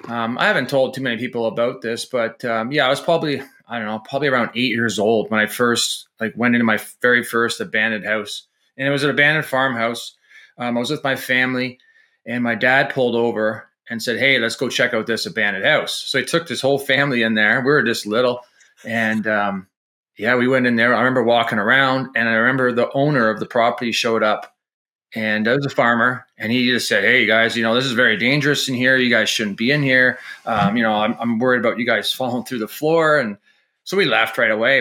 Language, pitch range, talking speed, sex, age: English, 115-135 Hz, 240 wpm, male, 30-49